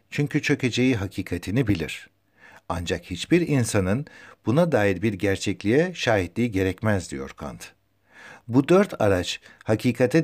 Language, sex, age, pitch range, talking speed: Turkish, male, 60-79, 95-140 Hz, 110 wpm